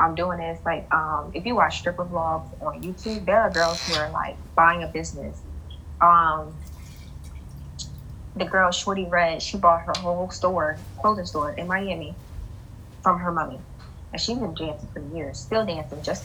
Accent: American